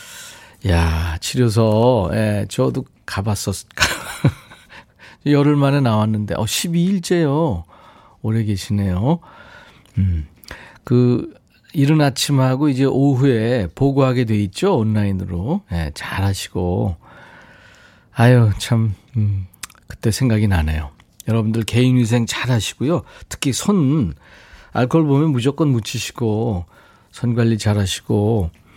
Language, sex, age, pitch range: Korean, male, 40-59, 100-140 Hz